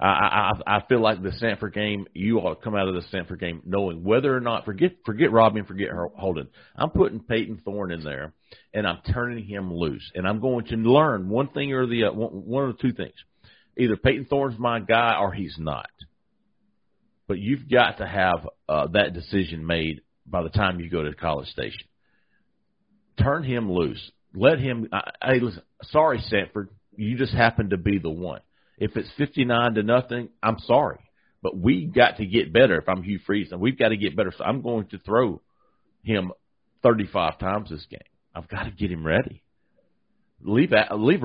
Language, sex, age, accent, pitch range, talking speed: English, male, 40-59, American, 95-120 Hz, 195 wpm